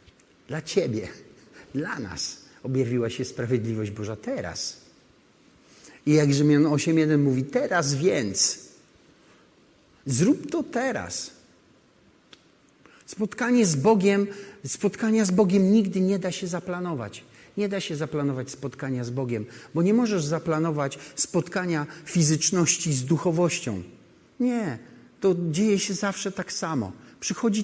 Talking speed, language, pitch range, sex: 115 wpm, Polish, 135-185 Hz, male